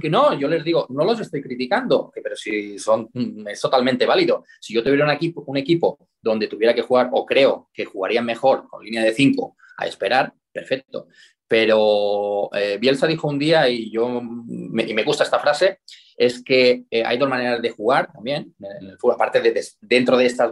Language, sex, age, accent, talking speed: Spanish, male, 20-39, Spanish, 195 wpm